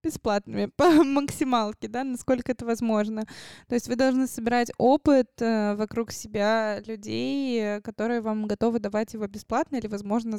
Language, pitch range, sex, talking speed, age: Russian, 205-235 Hz, female, 140 wpm, 20-39